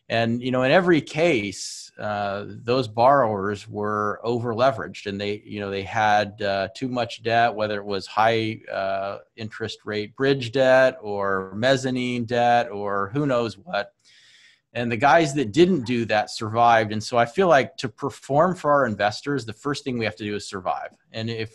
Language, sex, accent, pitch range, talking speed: English, male, American, 105-130 Hz, 185 wpm